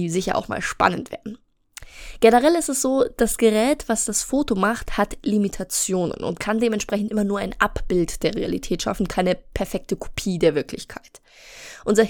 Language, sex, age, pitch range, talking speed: German, female, 20-39, 195-235 Hz, 165 wpm